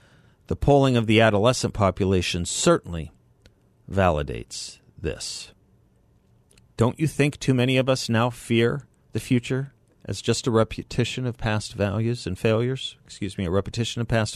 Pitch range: 100-130 Hz